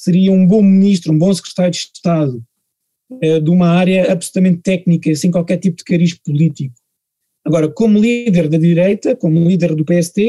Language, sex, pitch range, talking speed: Portuguese, male, 165-200 Hz, 170 wpm